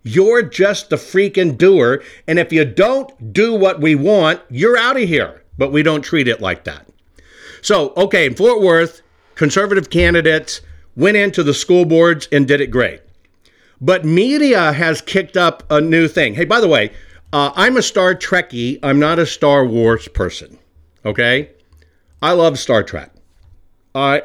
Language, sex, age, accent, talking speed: English, male, 50-69, American, 170 wpm